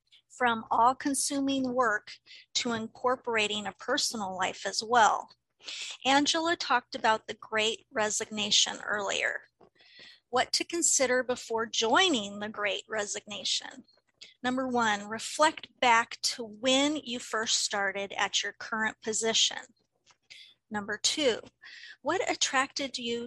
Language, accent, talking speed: English, American, 110 wpm